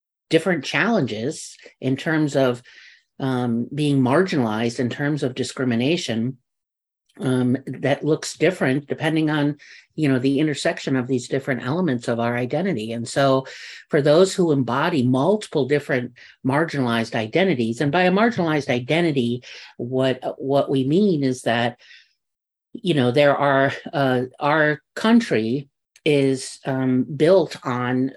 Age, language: 50-69, English